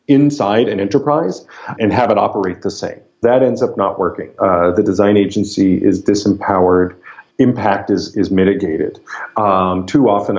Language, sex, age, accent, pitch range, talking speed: English, male, 40-59, American, 95-115 Hz, 155 wpm